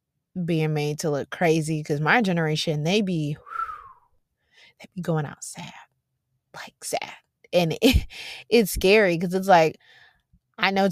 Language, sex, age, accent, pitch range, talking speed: English, female, 20-39, American, 160-215 Hz, 150 wpm